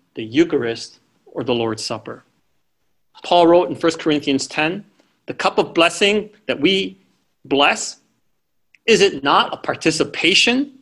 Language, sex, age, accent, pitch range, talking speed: English, male, 40-59, American, 150-250 Hz, 135 wpm